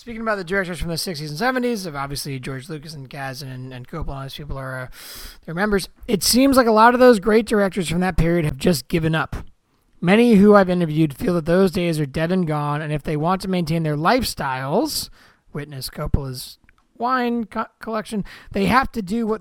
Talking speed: 215 wpm